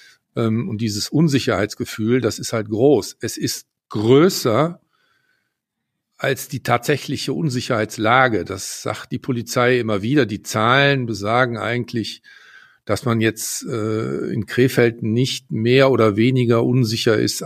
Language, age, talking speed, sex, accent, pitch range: German, 50-69, 120 wpm, male, German, 110-140 Hz